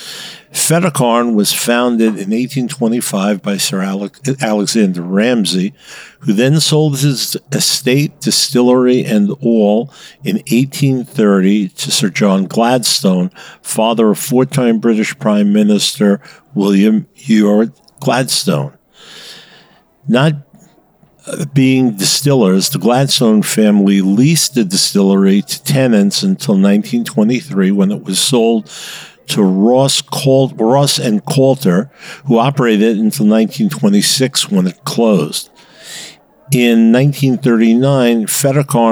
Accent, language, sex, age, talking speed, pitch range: American, English, male, 50-69, 100 wpm, 110-155 Hz